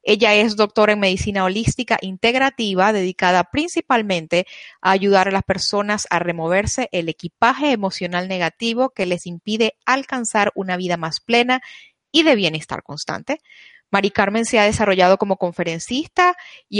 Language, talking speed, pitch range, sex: Spanish, 145 wpm, 180-235 Hz, female